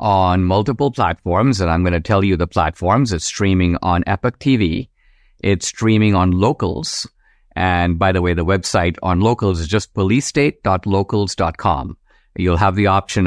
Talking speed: 160 wpm